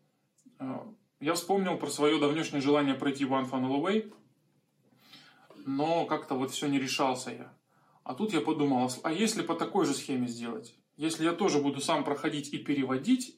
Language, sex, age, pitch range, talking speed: Russian, male, 20-39, 130-160 Hz, 160 wpm